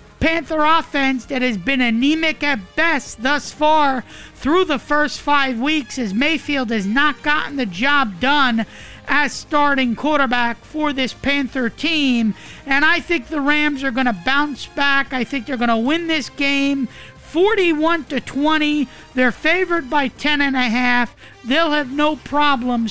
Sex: male